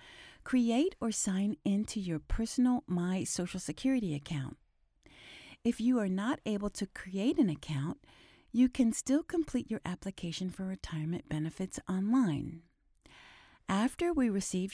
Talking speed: 130 wpm